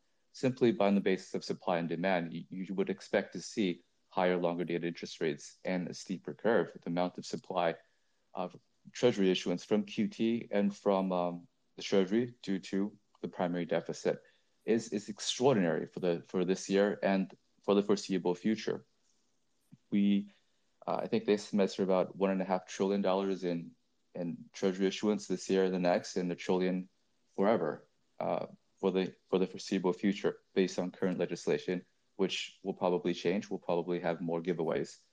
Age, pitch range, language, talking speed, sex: 20-39, 90-100 Hz, English, 175 wpm, male